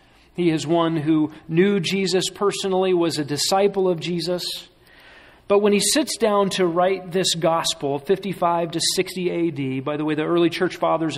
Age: 40-59